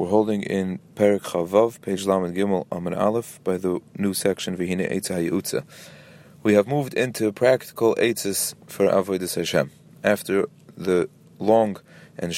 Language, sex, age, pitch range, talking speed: English, male, 30-49, 95-115 Hz, 145 wpm